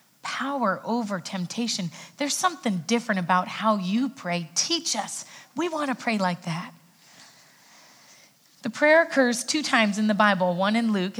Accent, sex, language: American, female, English